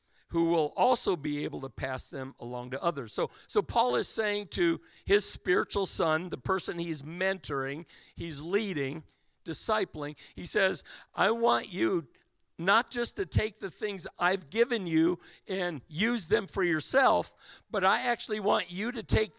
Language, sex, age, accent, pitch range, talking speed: English, male, 50-69, American, 155-215 Hz, 165 wpm